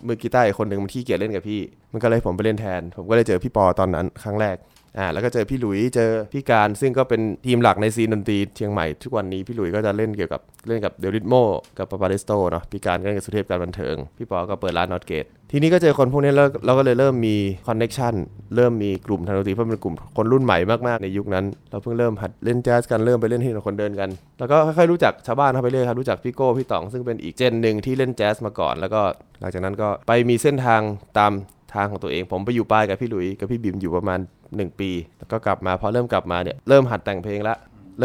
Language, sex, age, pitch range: Thai, male, 20-39, 100-125 Hz